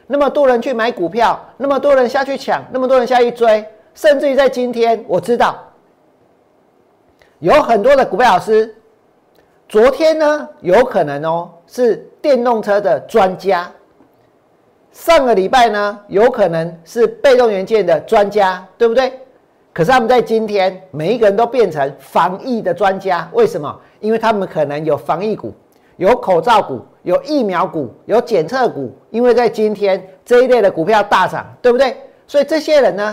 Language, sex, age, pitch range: Chinese, male, 50-69, 210-280 Hz